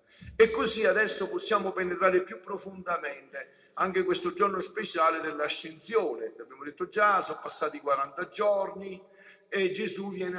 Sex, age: male, 50-69